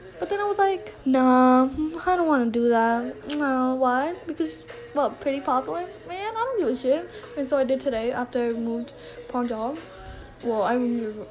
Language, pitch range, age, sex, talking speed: English, 235-280 Hz, 10-29, female, 190 wpm